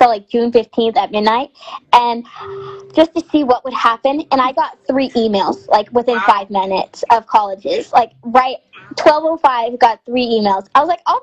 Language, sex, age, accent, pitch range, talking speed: English, female, 10-29, American, 225-290 Hz, 180 wpm